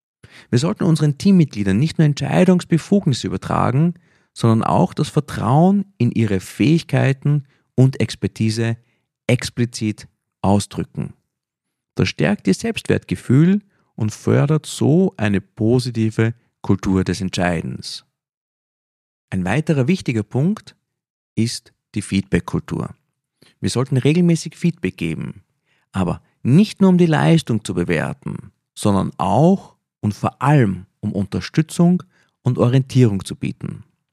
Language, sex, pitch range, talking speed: German, male, 105-155 Hz, 110 wpm